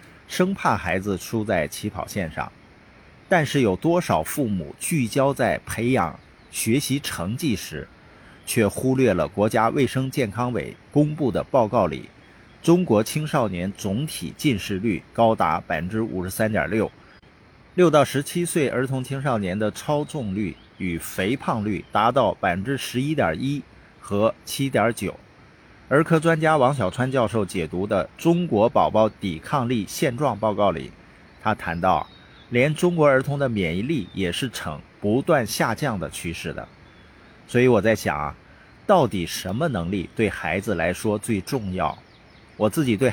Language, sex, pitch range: Chinese, male, 95-140 Hz